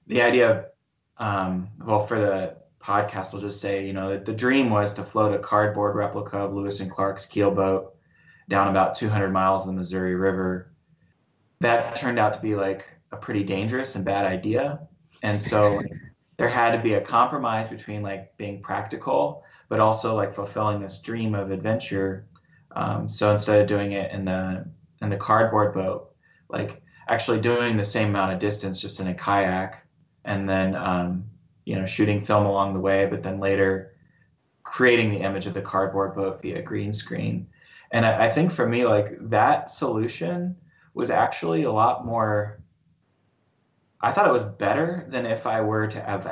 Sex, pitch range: male, 95-115 Hz